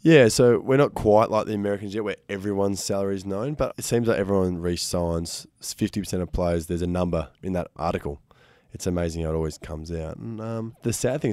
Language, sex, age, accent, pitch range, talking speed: English, male, 20-39, Australian, 85-100 Hz, 215 wpm